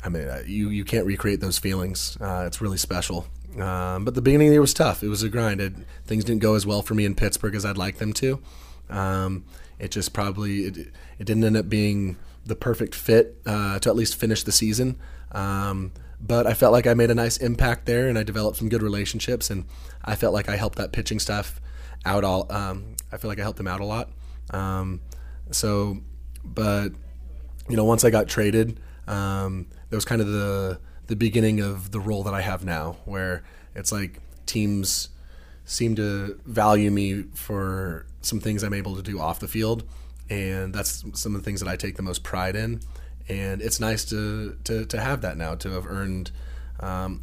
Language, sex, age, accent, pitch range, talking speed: English, male, 20-39, American, 90-105 Hz, 210 wpm